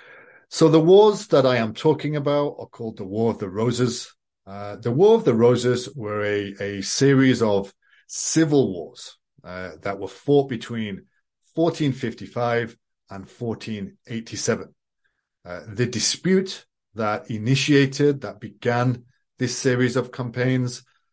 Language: English